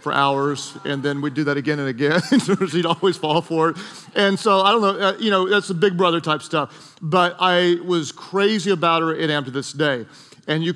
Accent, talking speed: American, 245 wpm